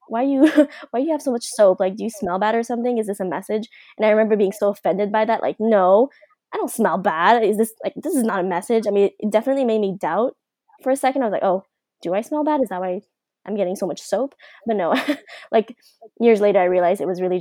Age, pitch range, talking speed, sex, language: 20-39, 190-240 Hz, 265 wpm, female, English